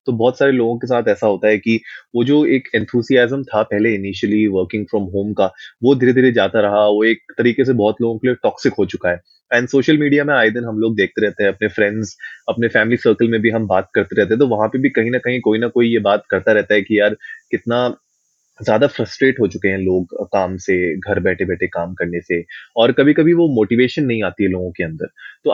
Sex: male